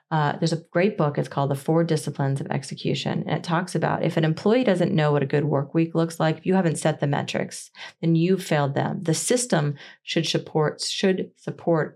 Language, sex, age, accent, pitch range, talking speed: English, female, 30-49, American, 150-175 Hz, 220 wpm